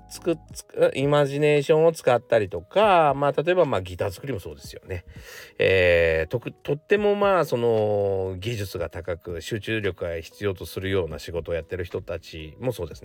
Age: 40-59